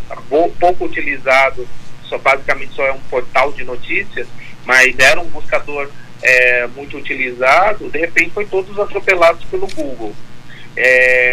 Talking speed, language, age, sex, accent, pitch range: 115 wpm, Portuguese, 40-59, male, Brazilian, 130-185 Hz